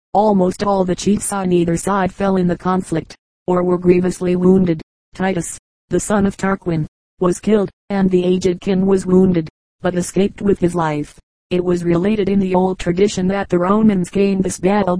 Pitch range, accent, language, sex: 175-195 Hz, American, English, female